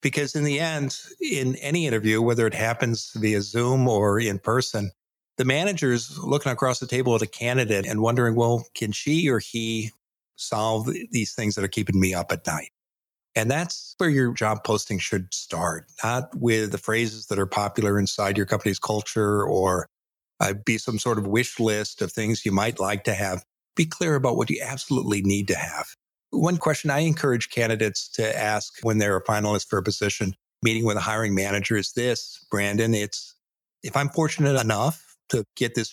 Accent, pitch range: American, 105-140 Hz